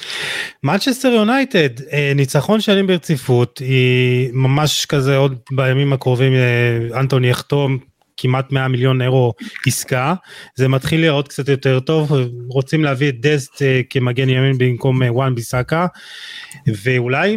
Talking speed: 105 wpm